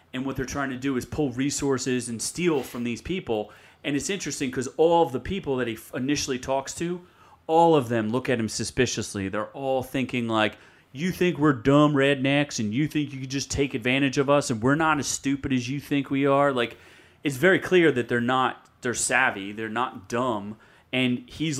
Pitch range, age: 110-145 Hz, 30-49